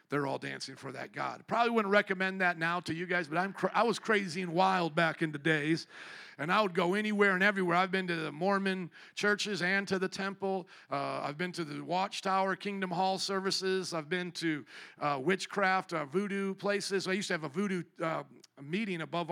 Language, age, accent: English, 50-69, American